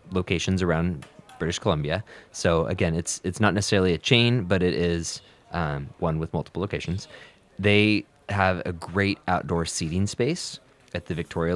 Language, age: English, 20-39